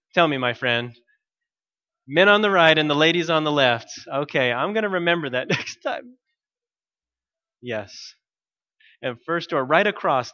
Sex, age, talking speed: male, 20-39, 155 wpm